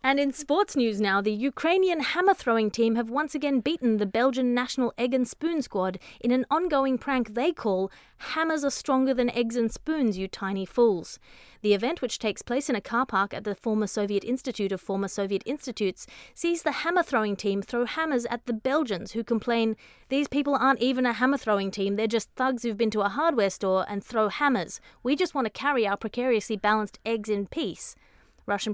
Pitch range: 210-270 Hz